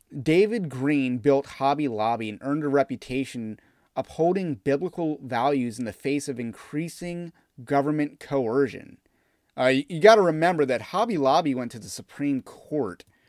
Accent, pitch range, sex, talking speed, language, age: American, 110-155 Hz, male, 145 wpm, English, 30-49